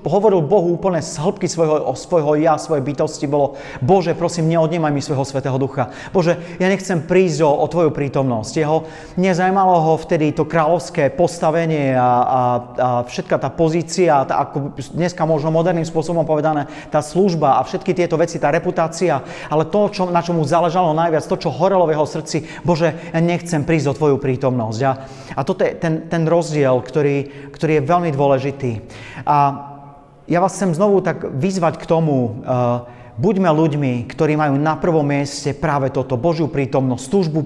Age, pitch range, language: 40-59, 140-170 Hz, Slovak